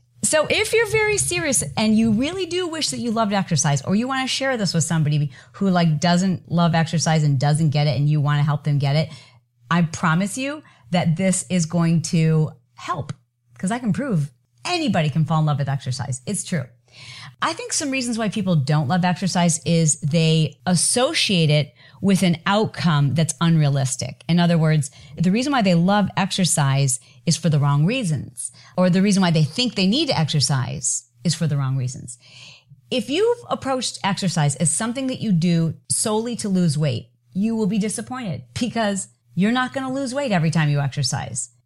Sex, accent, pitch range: female, American, 145-195 Hz